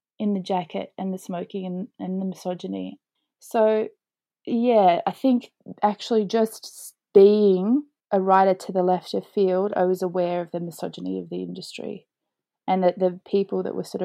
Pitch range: 180-220 Hz